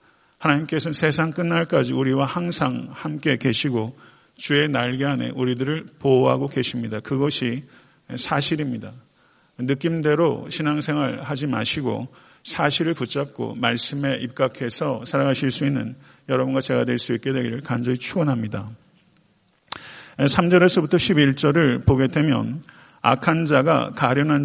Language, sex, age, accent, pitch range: Korean, male, 50-69, native, 130-155 Hz